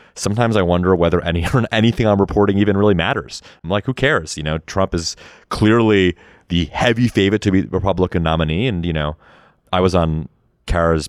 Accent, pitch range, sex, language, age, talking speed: American, 80-95 Hz, male, English, 30-49, 195 wpm